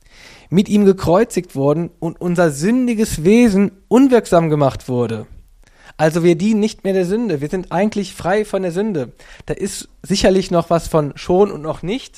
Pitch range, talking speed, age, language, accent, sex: 150-195 Hz, 175 wpm, 20-39, German, German, male